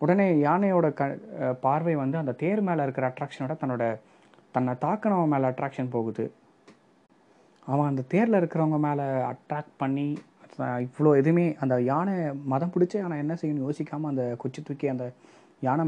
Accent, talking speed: native, 140 wpm